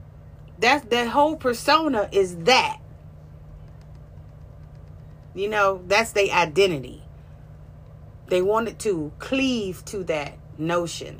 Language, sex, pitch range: English, female, 115-180 Hz